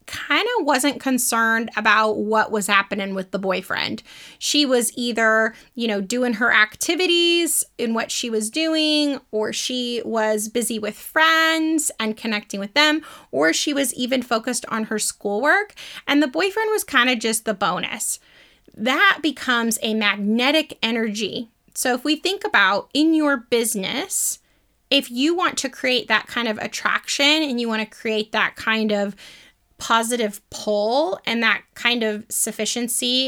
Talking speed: 160 wpm